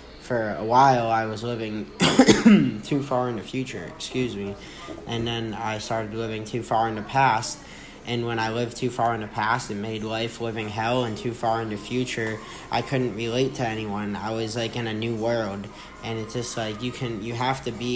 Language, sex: English, male